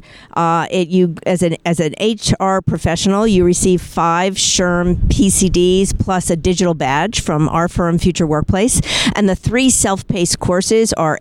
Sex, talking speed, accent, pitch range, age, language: female, 155 wpm, American, 160-195 Hz, 50-69, English